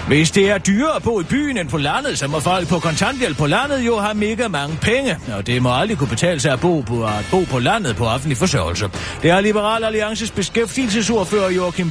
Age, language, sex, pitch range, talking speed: 40-59, Danish, male, 120-205 Hz, 230 wpm